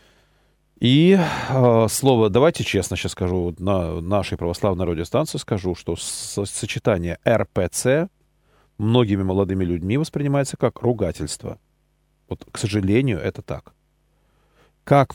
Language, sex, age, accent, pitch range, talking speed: Russian, male, 40-59, native, 90-120 Hz, 115 wpm